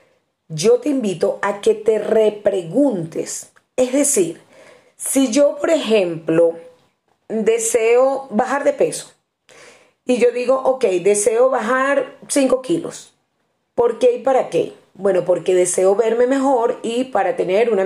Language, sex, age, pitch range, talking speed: Spanish, female, 30-49, 185-290 Hz, 130 wpm